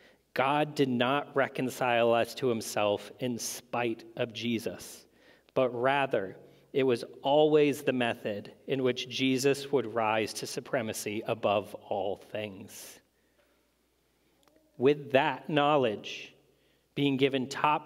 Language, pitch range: English, 125-155 Hz